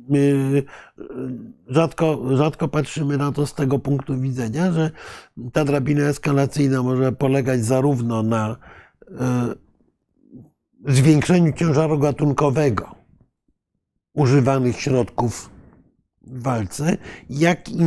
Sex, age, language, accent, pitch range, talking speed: male, 50-69, Polish, native, 130-155 Hz, 90 wpm